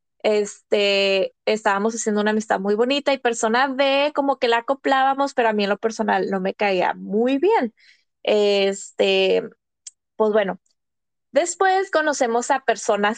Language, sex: Spanish, female